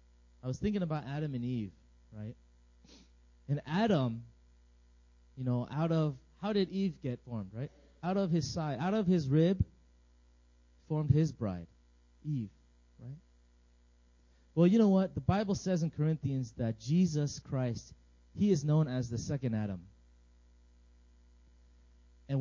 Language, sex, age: English, male, 30-49